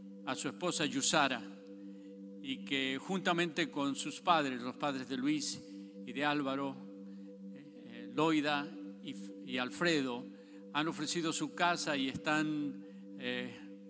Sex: male